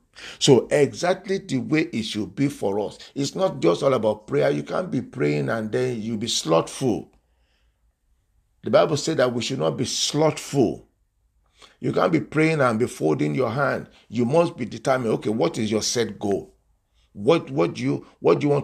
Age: 50-69